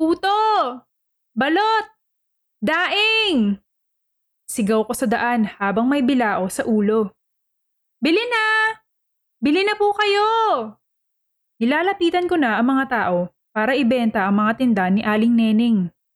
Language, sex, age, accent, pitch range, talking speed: Filipino, female, 20-39, native, 215-330 Hz, 120 wpm